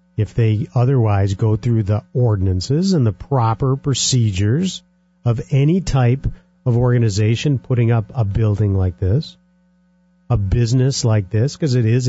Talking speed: 145 wpm